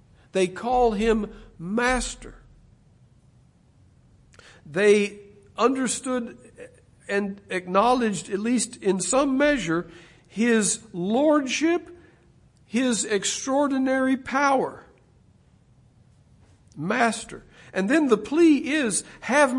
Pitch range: 190-285 Hz